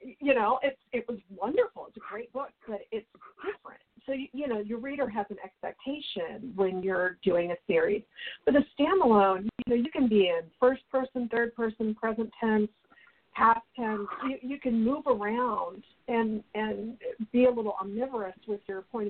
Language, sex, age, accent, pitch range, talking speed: English, female, 50-69, American, 195-250 Hz, 180 wpm